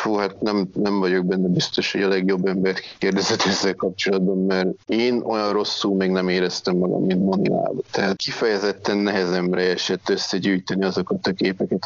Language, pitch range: Hungarian, 95-105 Hz